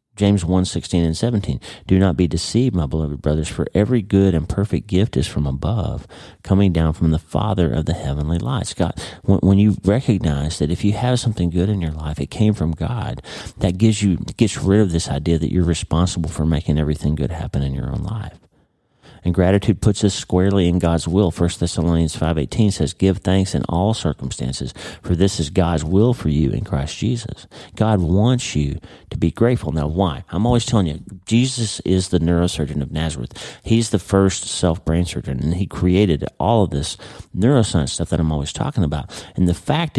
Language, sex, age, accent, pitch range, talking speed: English, male, 40-59, American, 80-100 Hz, 200 wpm